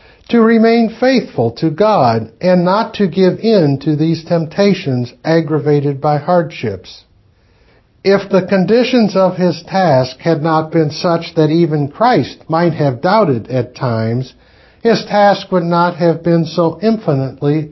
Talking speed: 140 wpm